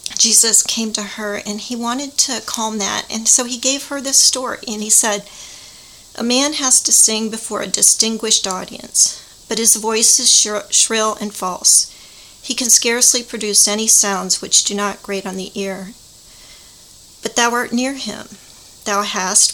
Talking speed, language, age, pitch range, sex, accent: 170 wpm, English, 40-59, 205-240 Hz, female, American